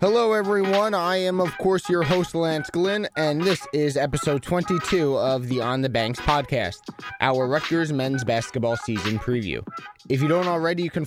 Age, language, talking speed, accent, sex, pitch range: 20-39, English, 180 wpm, American, male, 130-160 Hz